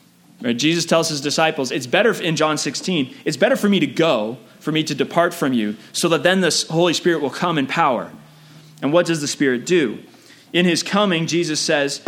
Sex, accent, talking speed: male, American, 210 wpm